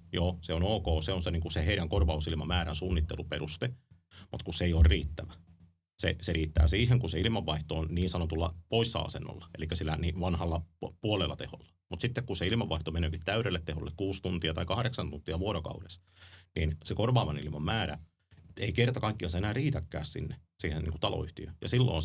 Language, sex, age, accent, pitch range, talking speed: Finnish, male, 30-49, native, 80-95 Hz, 180 wpm